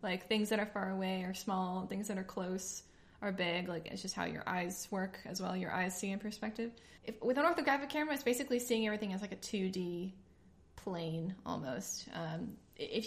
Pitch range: 185-225 Hz